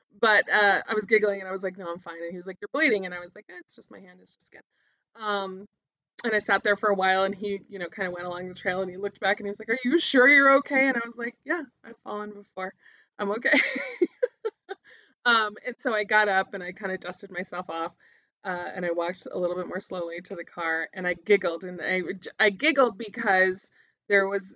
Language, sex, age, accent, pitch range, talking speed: English, female, 20-39, American, 180-220 Hz, 260 wpm